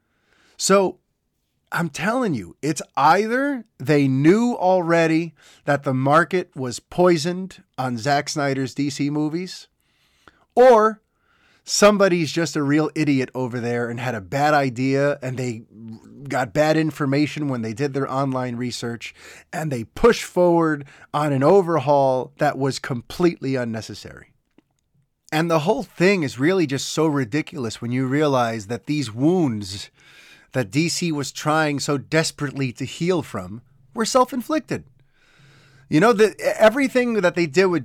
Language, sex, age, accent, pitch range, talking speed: English, male, 30-49, American, 130-170 Hz, 140 wpm